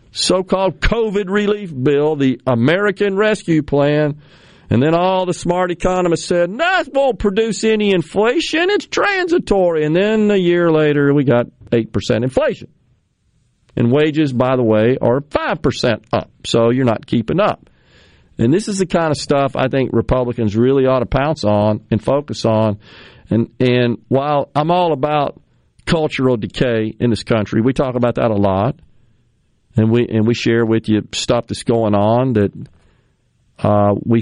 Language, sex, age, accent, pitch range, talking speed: English, male, 40-59, American, 115-170 Hz, 165 wpm